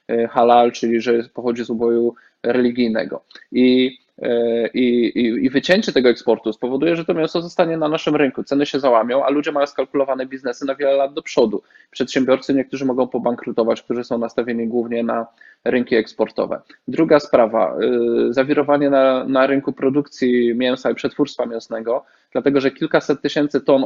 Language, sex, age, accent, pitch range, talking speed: Polish, male, 20-39, native, 120-140 Hz, 150 wpm